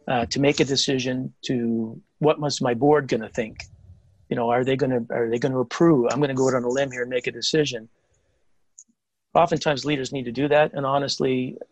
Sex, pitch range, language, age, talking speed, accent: male, 120-140 Hz, English, 40-59, 230 wpm, American